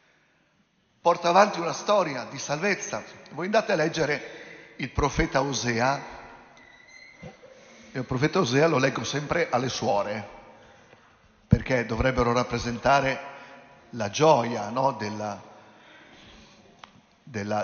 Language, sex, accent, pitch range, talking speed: Italian, male, native, 125-175 Hz, 100 wpm